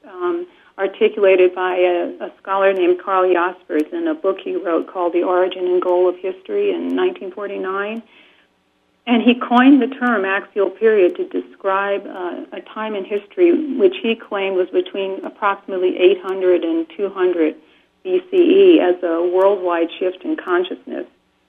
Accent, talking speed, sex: American, 150 wpm, female